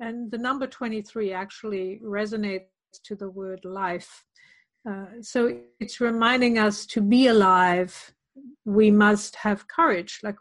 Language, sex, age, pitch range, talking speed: English, female, 50-69, 195-225 Hz, 135 wpm